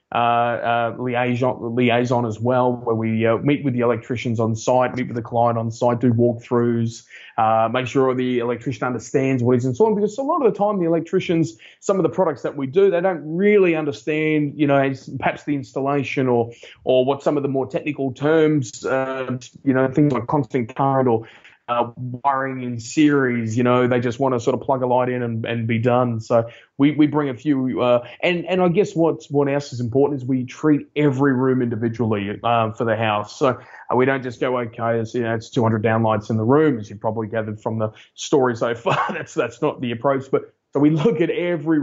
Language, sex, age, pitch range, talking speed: English, male, 20-39, 120-145 Hz, 225 wpm